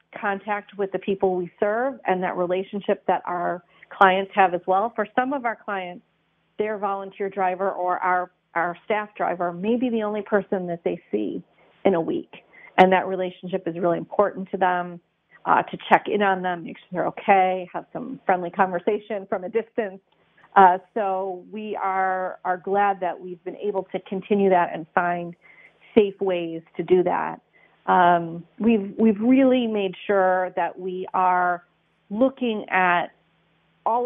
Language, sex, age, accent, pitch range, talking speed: English, female, 40-59, American, 180-205 Hz, 170 wpm